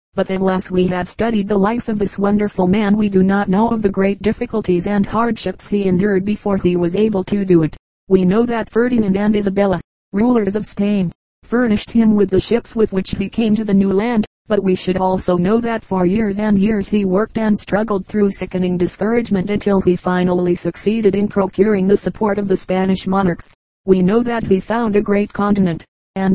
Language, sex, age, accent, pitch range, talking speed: English, female, 40-59, American, 185-210 Hz, 205 wpm